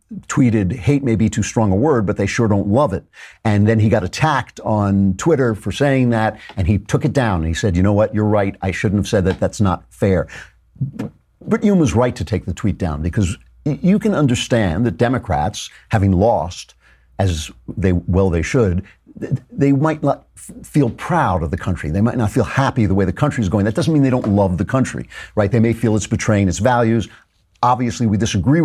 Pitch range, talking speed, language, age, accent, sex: 95-125 Hz, 220 wpm, English, 50-69, American, male